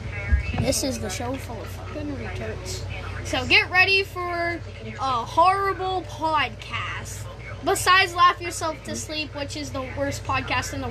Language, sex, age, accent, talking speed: English, female, 10-29, American, 150 wpm